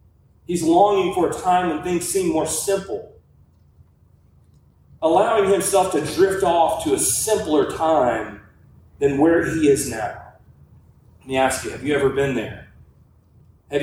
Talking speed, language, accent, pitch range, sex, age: 150 wpm, English, American, 155-195 Hz, male, 30-49